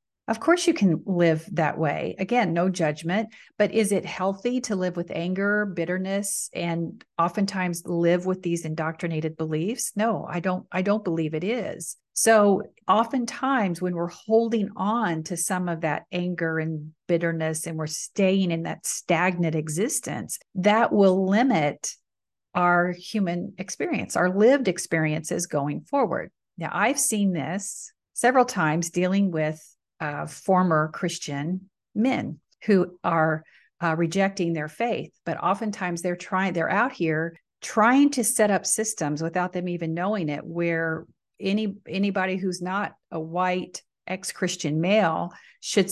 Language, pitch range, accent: English, 165-205 Hz, American